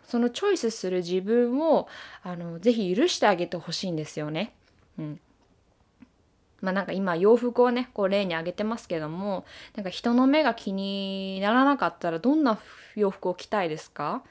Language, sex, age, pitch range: Japanese, female, 20-39, 180-245 Hz